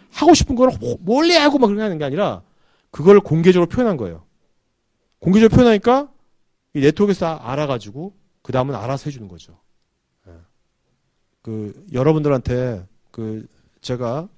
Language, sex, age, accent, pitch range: Korean, male, 40-59, native, 120-190 Hz